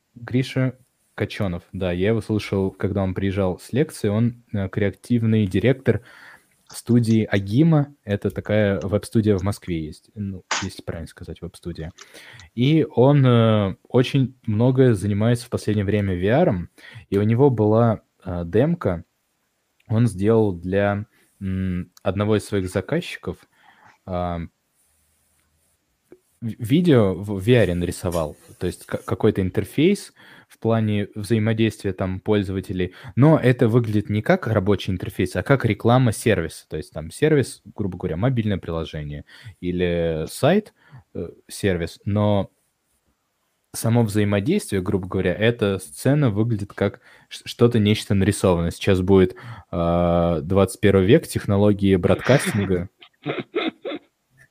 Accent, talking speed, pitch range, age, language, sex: native, 120 wpm, 95-115 Hz, 20-39, Russian, male